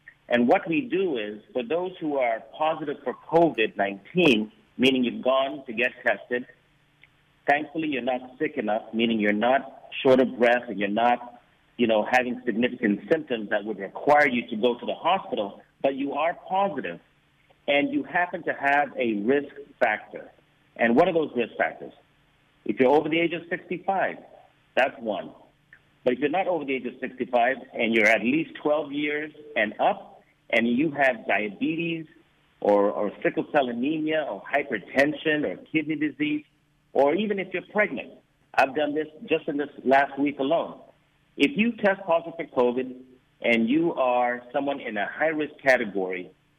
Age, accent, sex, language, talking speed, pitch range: 50-69, American, male, English, 170 wpm, 125-165 Hz